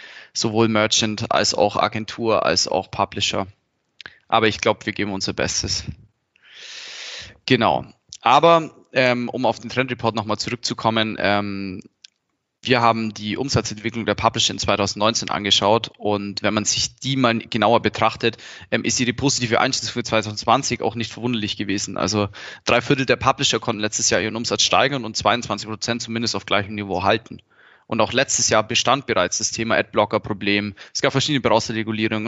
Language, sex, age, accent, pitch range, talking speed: German, male, 20-39, German, 105-120 Hz, 160 wpm